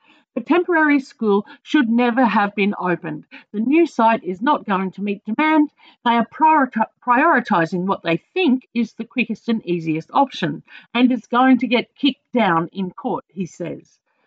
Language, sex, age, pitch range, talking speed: English, female, 50-69, 185-265 Hz, 170 wpm